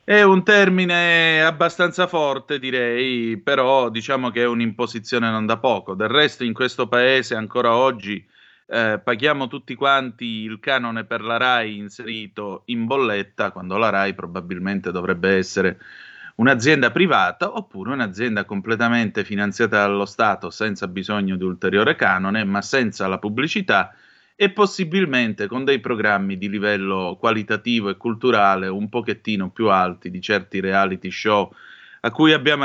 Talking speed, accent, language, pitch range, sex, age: 140 wpm, native, Italian, 105-130 Hz, male, 30-49